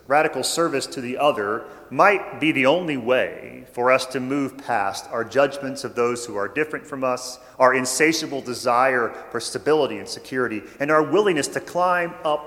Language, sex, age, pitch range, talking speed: English, male, 40-59, 120-150 Hz, 180 wpm